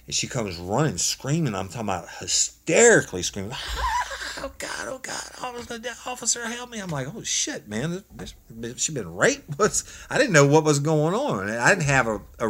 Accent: American